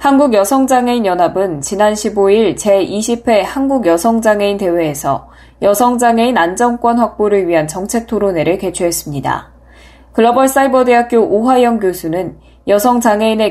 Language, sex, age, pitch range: Korean, female, 20-39, 190-235 Hz